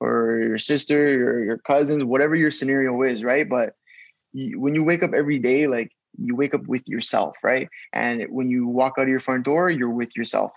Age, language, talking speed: 20-39, English, 210 wpm